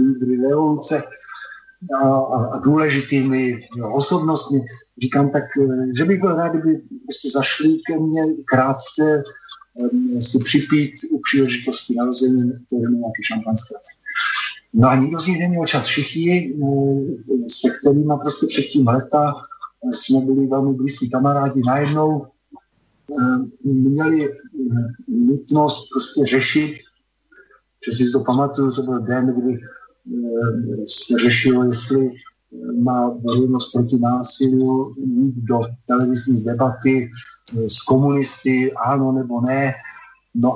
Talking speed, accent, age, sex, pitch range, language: 115 wpm, native, 50-69, male, 125-145 Hz, Czech